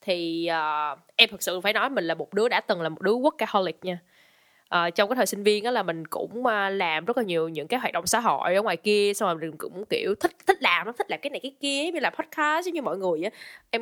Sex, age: female, 10-29